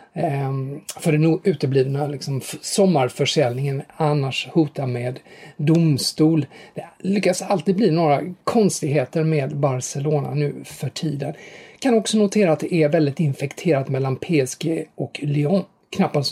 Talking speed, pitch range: 125 wpm, 140-170 Hz